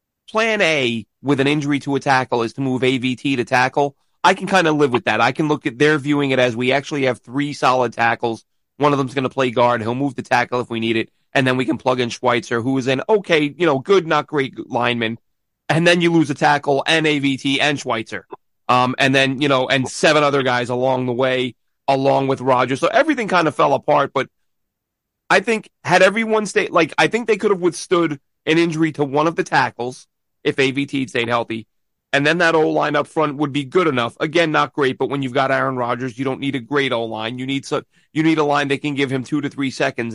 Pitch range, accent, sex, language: 125-150 Hz, American, male, English